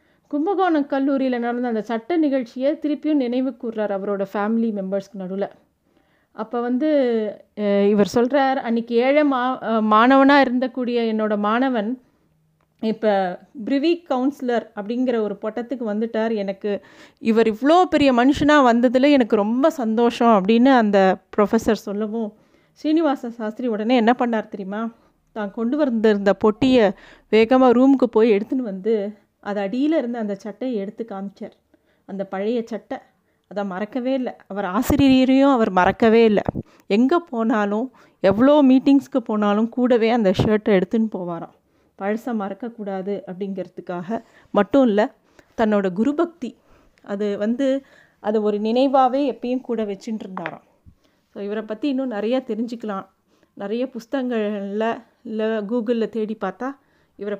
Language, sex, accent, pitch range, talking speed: Tamil, female, native, 205-260 Hz, 120 wpm